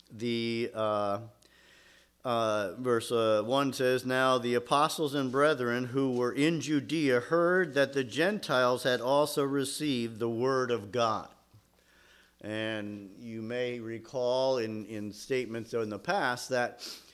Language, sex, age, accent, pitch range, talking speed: English, male, 50-69, American, 115-140 Hz, 135 wpm